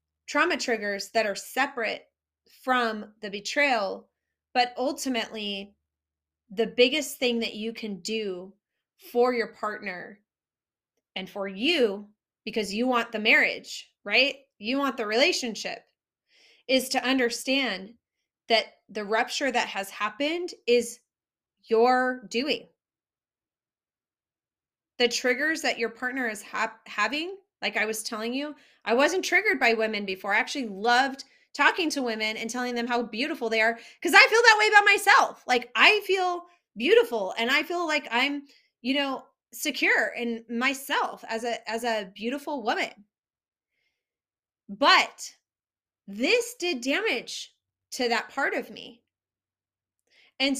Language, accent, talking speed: English, American, 135 wpm